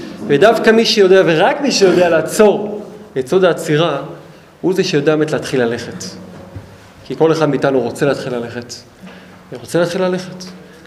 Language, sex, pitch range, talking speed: Hebrew, male, 140-185 Hz, 145 wpm